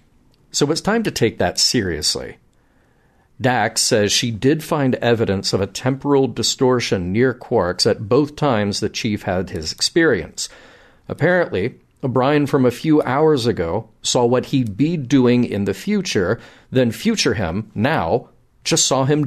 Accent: American